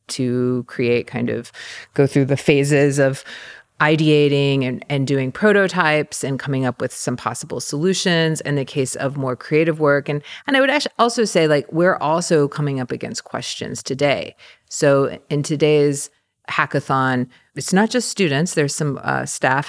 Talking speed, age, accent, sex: 170 wpm, 40-59, American, female